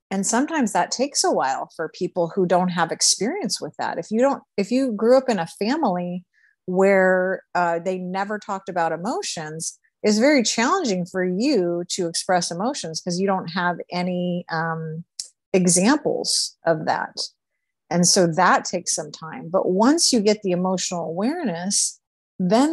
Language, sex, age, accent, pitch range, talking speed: English, female, 50-69, American, 175-220 Hz, 165 wpm